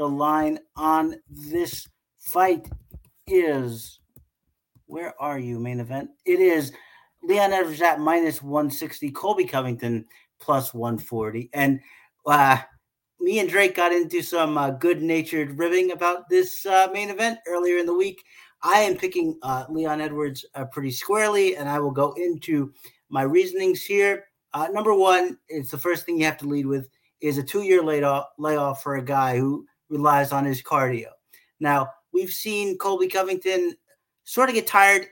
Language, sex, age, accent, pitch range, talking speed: English, male, 50-69, American, 145-190 Hz, 155 wpm